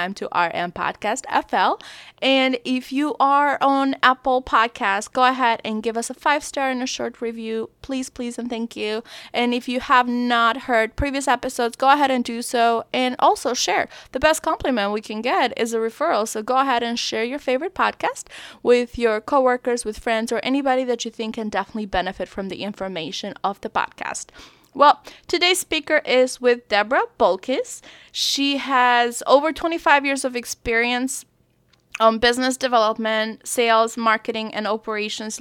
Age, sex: 20-39, female